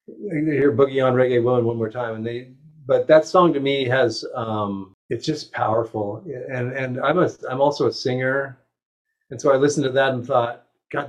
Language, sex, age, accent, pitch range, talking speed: English, male, 40-59, American, 115-145 Hz, 205 wpm